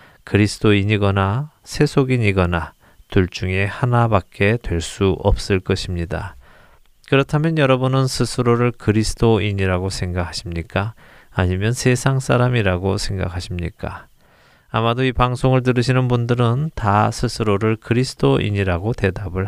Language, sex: Korean, male